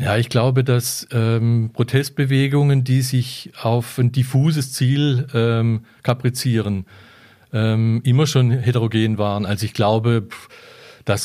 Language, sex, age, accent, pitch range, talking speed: German, male, 40-59, German, 110-125 Hz, 125 wpm